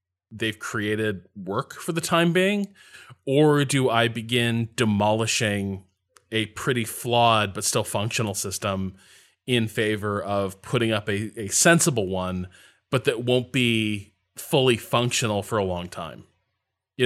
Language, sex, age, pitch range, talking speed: English, male, 20-39, 100-125 Hz, 135 wpm